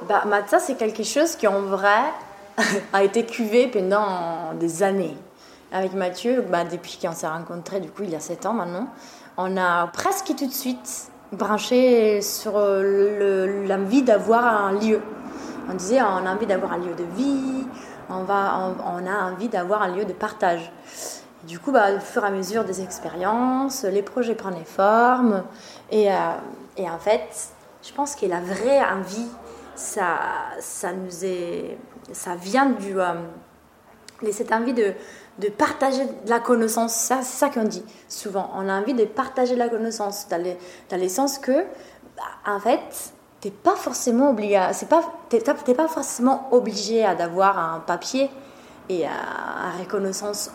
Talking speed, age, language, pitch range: 170 wpm, 20-39, French, 190-245 Hz